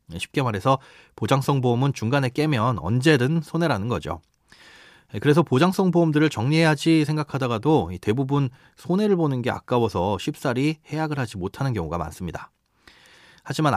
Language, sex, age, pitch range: Korean, male, 30-49, 110-155 Hz